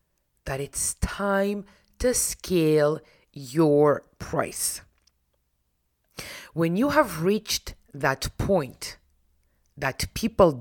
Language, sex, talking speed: English, female, 85 wpm